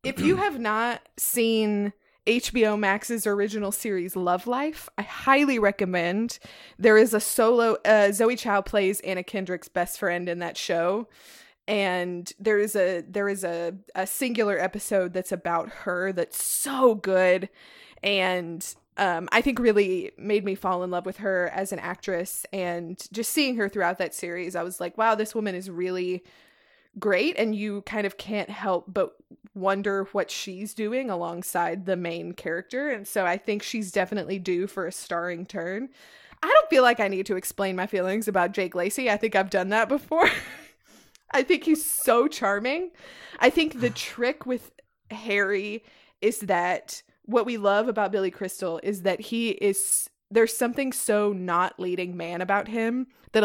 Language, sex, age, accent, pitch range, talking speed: English, female, 20-39, American, 185-225 Hz, 170 wpm